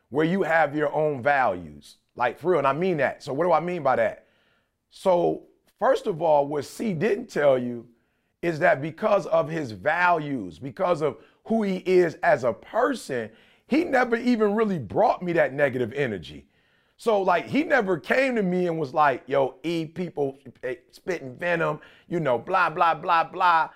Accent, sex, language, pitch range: American, male, English, 150-225 Hz